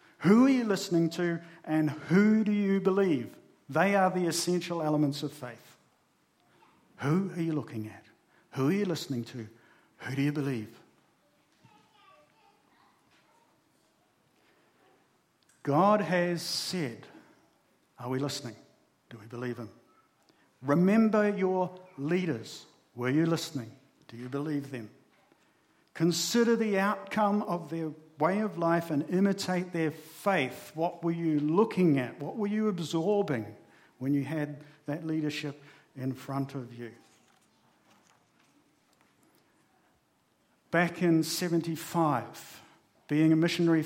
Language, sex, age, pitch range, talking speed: English, male, 50-69, 135-170 Hz, 120 wpm